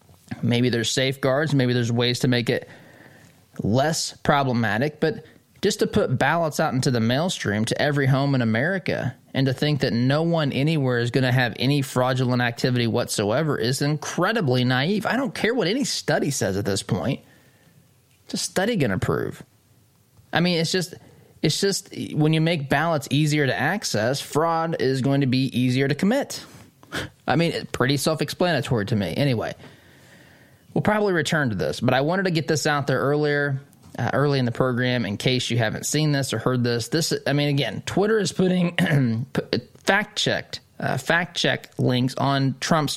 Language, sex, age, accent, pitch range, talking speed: English, male, 20-39, American, 120-150 Hz, 180 wpm